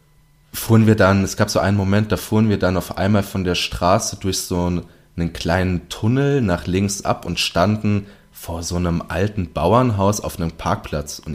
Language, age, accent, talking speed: German, 20-39, German, 195 wpm